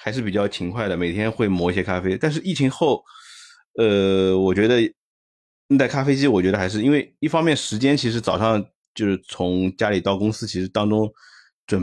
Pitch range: 95-120 Hz